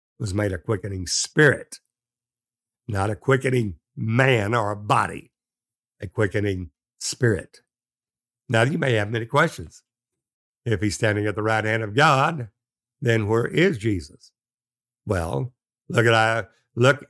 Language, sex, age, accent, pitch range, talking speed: English, male, 60-79, American, 110-135 Hz, 135 wpm